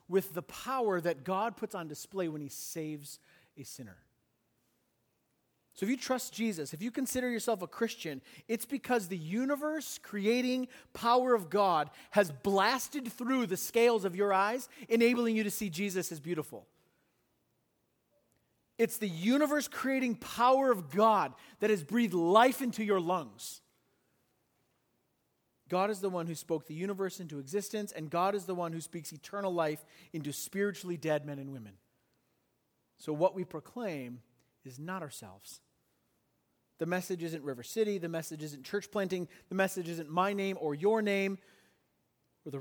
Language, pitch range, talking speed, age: English, 150-220 Hz, 160 wpm, 40-59